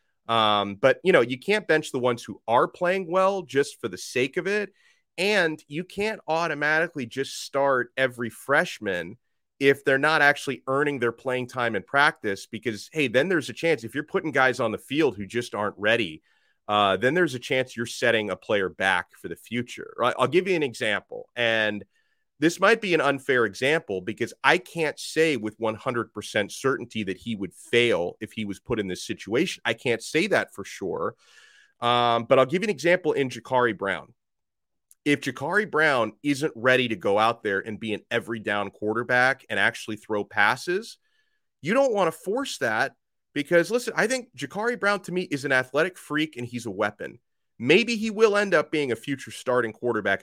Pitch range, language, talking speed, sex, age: 115-170 Hz, English, 195 wpm, male, 30-49